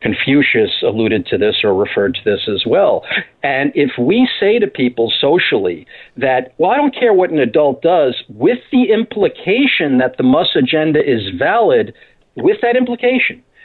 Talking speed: 165 wpm